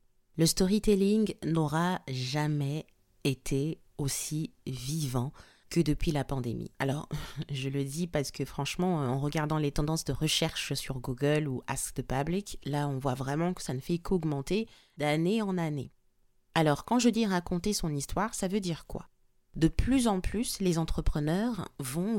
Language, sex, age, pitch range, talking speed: French, female, 30-49, 140-185 Hz, 160 wpm